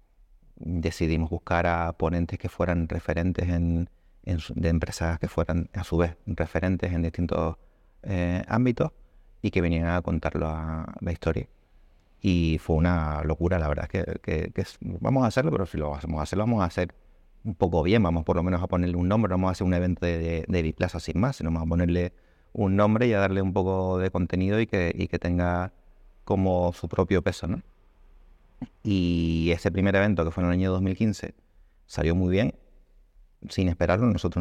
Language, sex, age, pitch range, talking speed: Spanish, male, 30-49, 85-95 Hz, 195 wpm